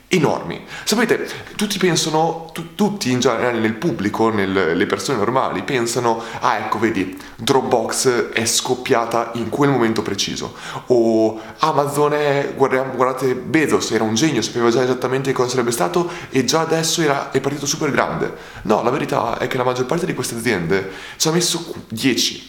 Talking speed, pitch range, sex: 165 wpm, 115-160 Hz, male